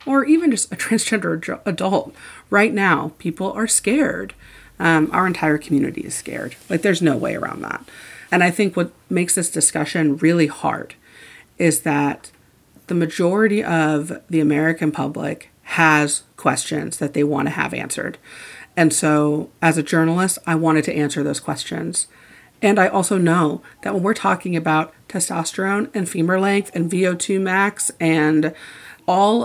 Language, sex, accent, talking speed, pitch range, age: English, female, American, 155 wpm, 155-190 Hz, 30-49